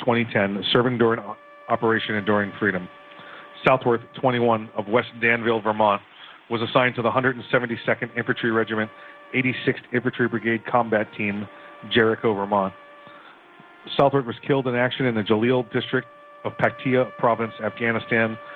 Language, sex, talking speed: English, male, 125 wpm